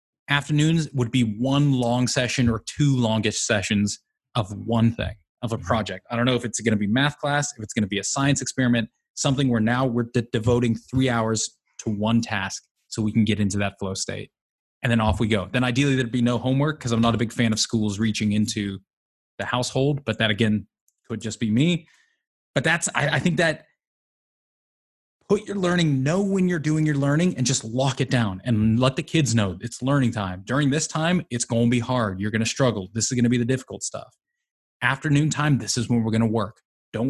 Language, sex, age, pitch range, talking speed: English, male, 20-39, 110-140 Hz, 225 wpm